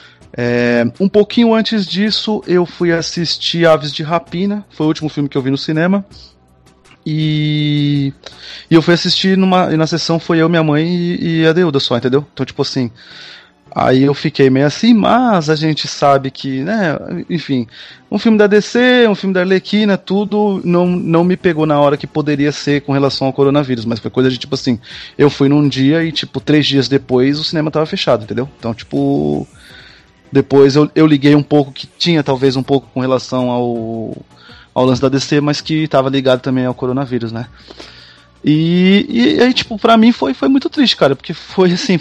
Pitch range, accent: 135-175 Hz, Brazilian